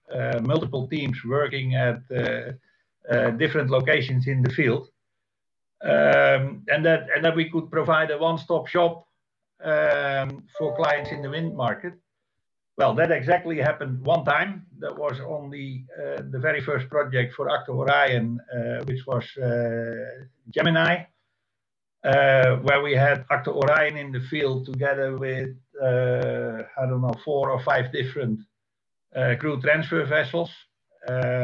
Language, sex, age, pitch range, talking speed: English, male, 60-79, 125-150 Hz, 145 wpm